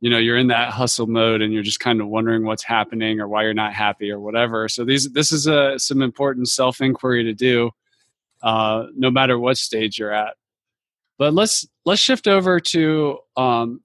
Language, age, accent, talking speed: English, 20-39, American, 205 wpm